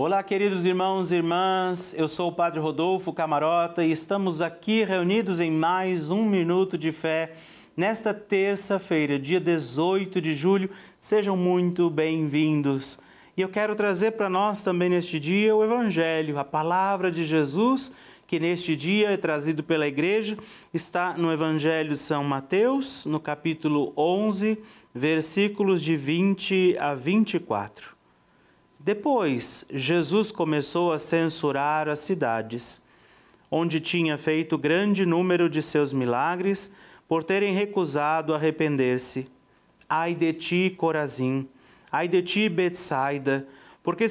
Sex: male